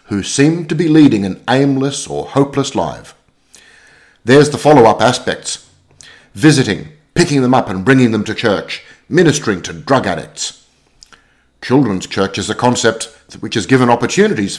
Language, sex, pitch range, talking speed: English, male, 100-145 Hz, 150 wpm